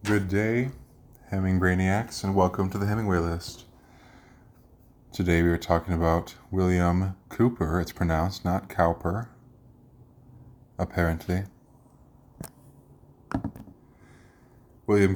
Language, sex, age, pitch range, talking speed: English, male, 20-39, 90-105 Hz, 90 wpm